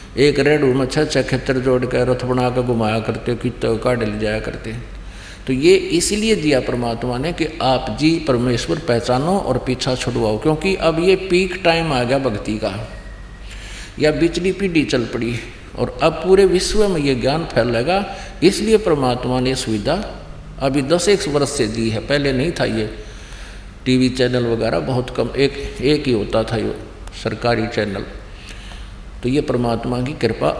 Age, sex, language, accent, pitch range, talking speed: 50-69, male, Hindi, native, 105-155 Hz, 165 wpm